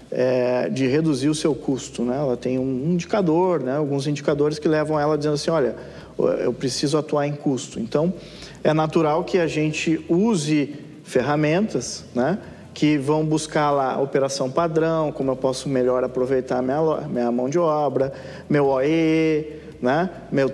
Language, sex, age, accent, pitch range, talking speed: Portuguese, male, 40-59, Brazilian, 145-180 Hz, 160 wpm